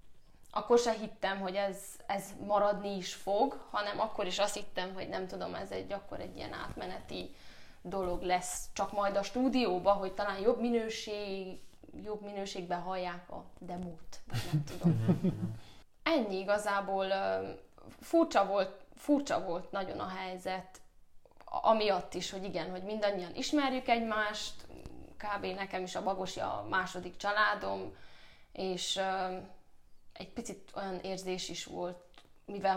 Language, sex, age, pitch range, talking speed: Hungarian, female, 10-29, 185-215 Hz, 130 wpm